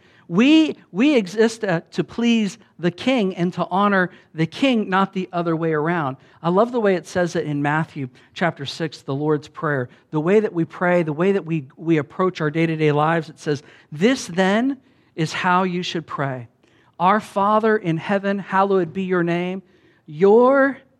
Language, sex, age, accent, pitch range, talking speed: English, male, 50-69, American, 145-200 Hz, 185 wpm